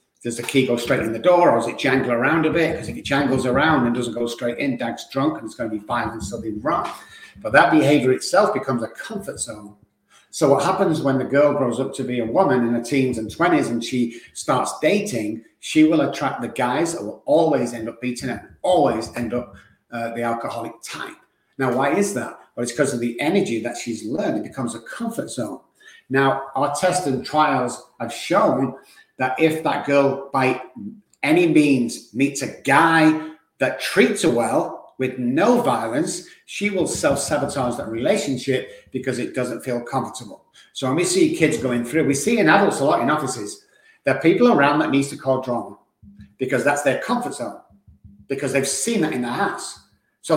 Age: 50-69